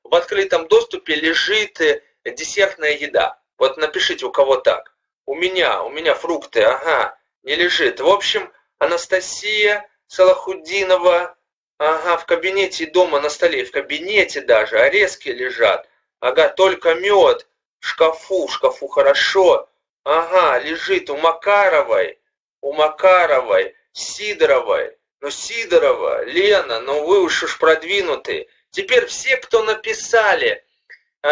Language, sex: Russian, male